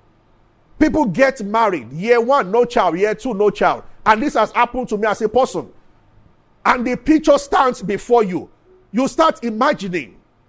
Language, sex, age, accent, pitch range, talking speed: English, male, 50-69, Nigerian, 175-260 Hz, 165 wpm